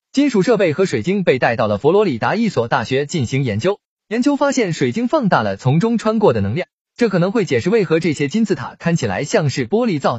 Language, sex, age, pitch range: Chinese, male, 20-39, 150-230 Hz